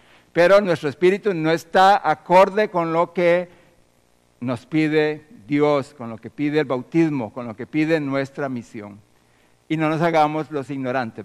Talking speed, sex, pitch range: 160 wpm, male, 130-170 Hz